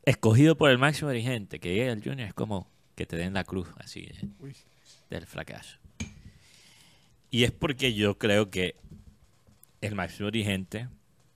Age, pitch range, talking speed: 30-49, 95-135 Hz, 155 wpm